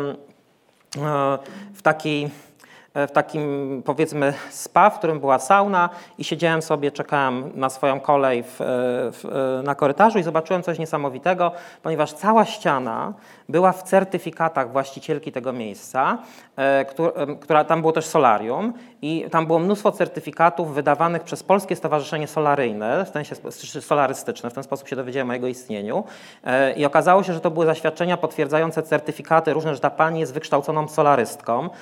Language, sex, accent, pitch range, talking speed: Polish, male, native, 135-165 Hz, 140 wpm